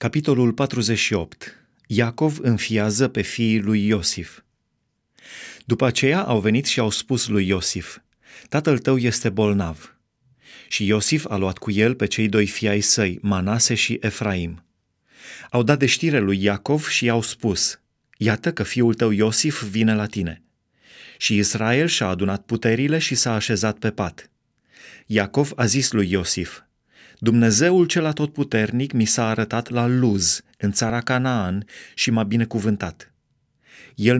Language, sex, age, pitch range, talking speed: Romanian, male, 30-49, 105-130 Hz, 145 wpm